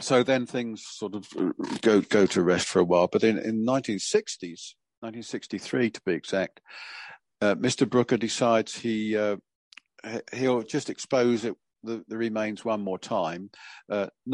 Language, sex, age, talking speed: English, male, 50-69, 155 wpm